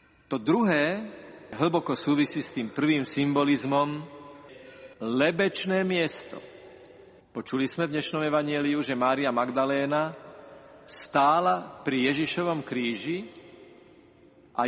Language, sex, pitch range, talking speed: Slovak, male, 145-175 Hz, 95 wpm